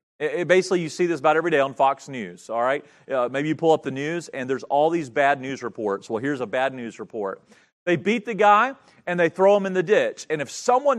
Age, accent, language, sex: 40-59, American, English, male